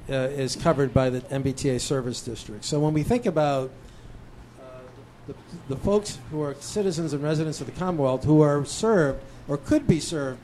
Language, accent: English, American